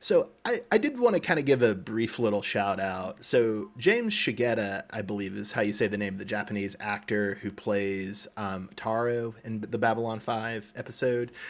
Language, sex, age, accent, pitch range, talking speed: English, male, 30-49, American, 100-120 Hz, 200 wpm